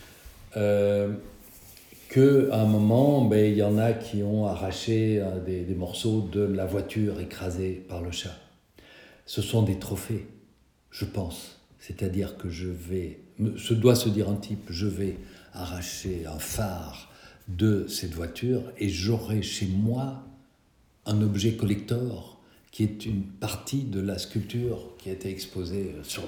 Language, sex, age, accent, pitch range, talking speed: French, male, 60-79, French, 90-110 Hz, 150 wpm